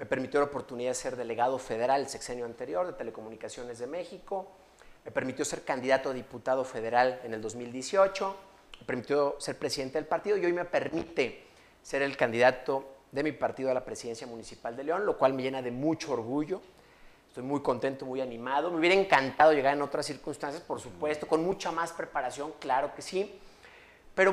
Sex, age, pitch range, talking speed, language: male, 40-59, 125-155 Hz, 185 wpm, Spanish